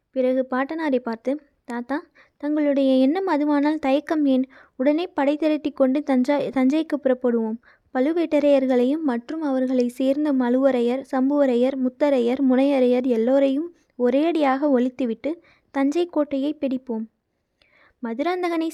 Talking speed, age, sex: 100 wpm, 20-39, female